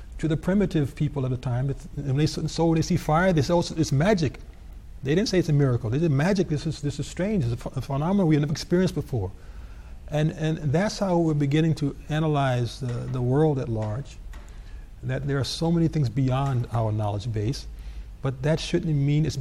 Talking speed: 220 wpm